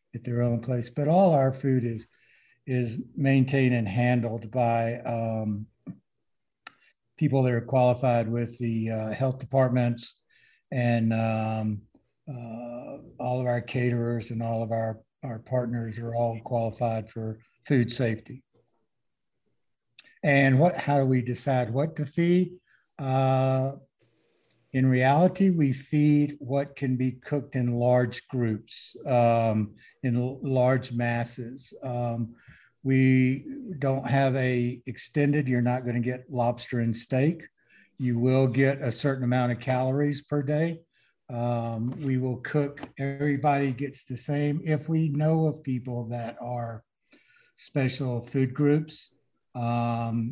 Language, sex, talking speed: English, male, 130 wpm